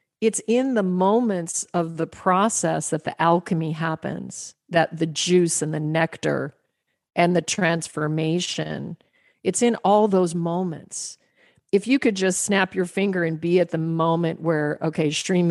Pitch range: 160-180 Hz